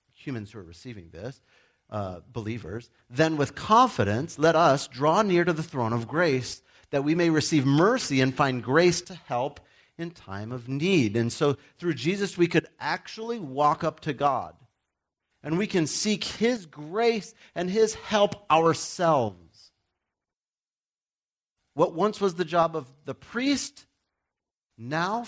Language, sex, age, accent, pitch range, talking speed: English, male, 40-59, American, 95-155 Hz, 150 wpm